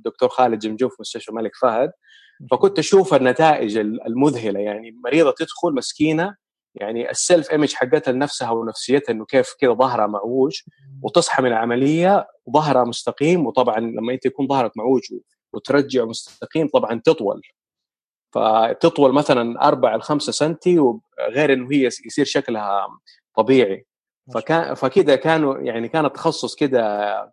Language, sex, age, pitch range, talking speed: Arabic, male, 30-49, 125-160 Hz, 125 wpm